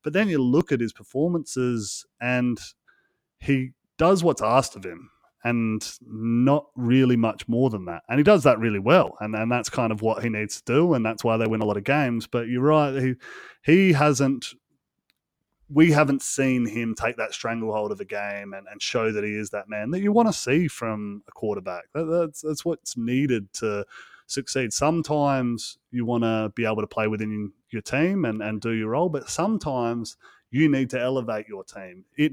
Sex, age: male, 30-49